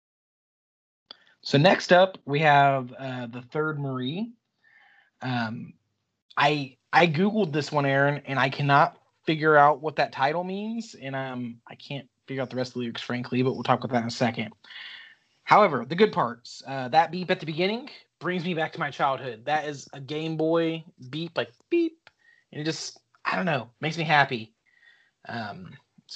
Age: 30-49